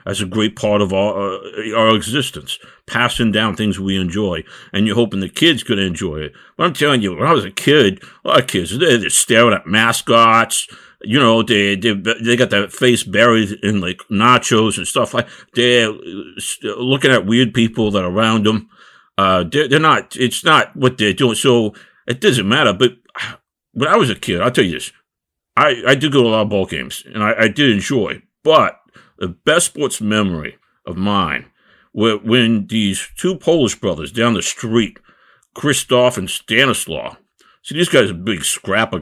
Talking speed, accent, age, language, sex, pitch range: 195 wpm, American, 50-69, English, male, 100-125 Hz